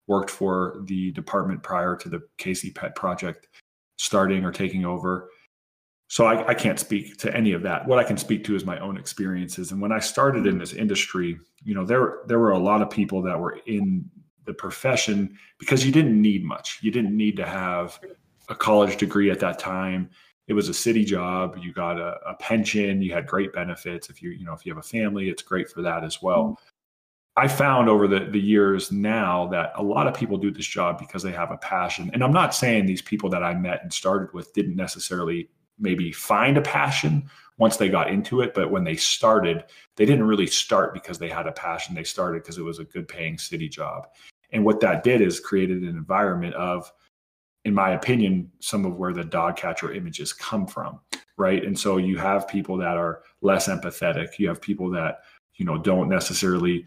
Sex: male